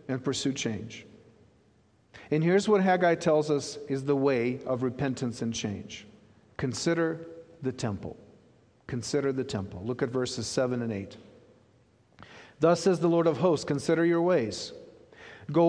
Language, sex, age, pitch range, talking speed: English, male, 50-69, 125-175 Hz, 145 wpm